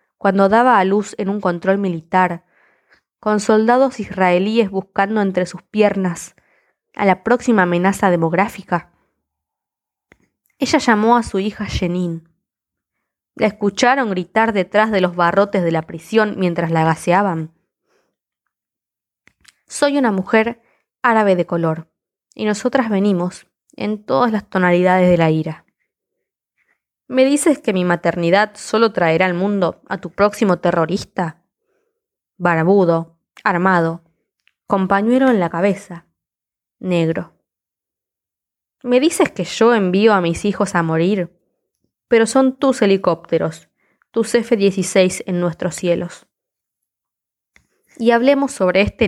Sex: female